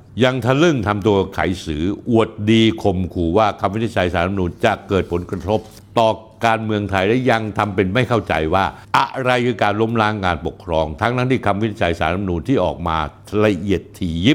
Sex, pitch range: male, 95-125 Hz